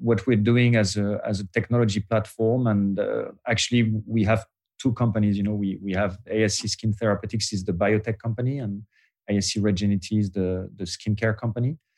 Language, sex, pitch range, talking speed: English, male, 100-115 Hz, 180 wpm